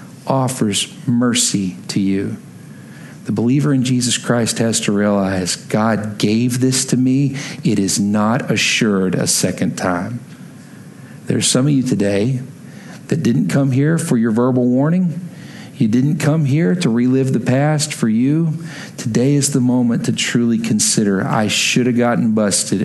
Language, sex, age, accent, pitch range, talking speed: English, male, 50-69, American, 110-145 Hz, 155 wpm